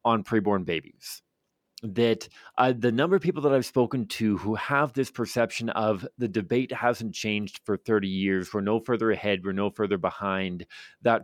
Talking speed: 180 wpm